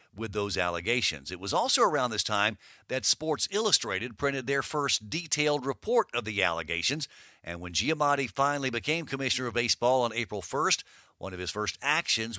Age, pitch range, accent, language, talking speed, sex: 50-69, 115-145 Hz, American, English, 175 wpm, male